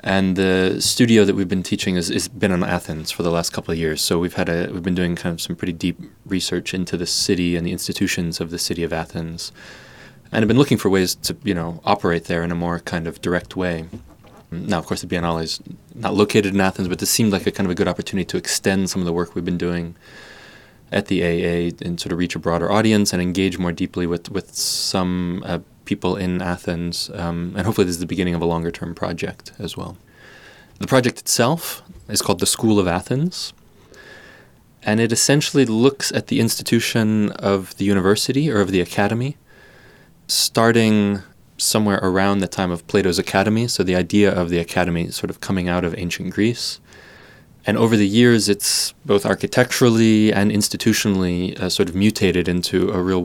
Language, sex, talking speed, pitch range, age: English, male, 205 wpm, 85-105 Hz, 20-39